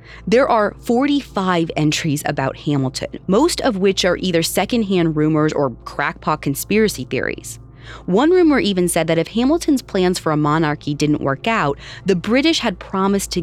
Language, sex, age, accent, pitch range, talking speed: English, female, 30-49, American, 150-250 Hz, 160 wpm